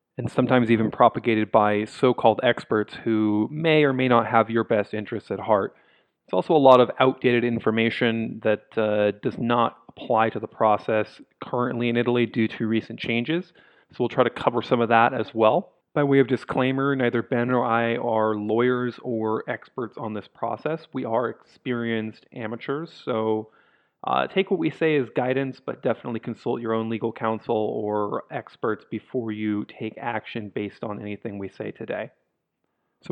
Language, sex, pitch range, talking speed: English, male, 110-130 Hz, 175 wpm